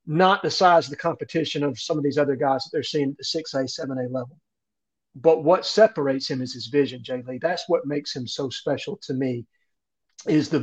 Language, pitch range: English, 135-160 Hz